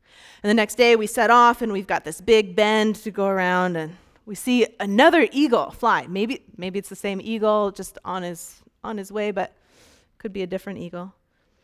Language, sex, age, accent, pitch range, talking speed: English, female, 30-49, American, 195-245 Hz, 210 wpm